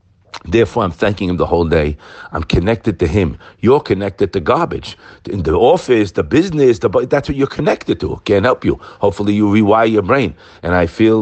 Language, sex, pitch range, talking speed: English, male, 85-110 Hz, 205 wpm